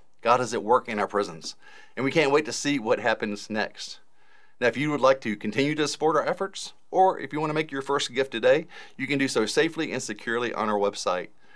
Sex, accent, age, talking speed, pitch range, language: male, American, 40-59, 245 wpm, 100-145 Hz, English